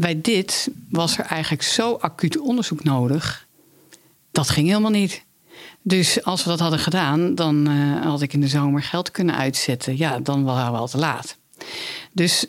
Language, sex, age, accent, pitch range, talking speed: Dutch, female, 50-69, Dutch, 145-180 Hz, 180 wpm